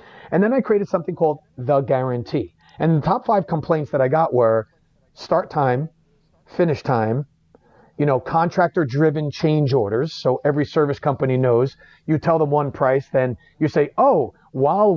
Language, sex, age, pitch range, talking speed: English, male, 40-59, 130-160 Hz, 170 wpm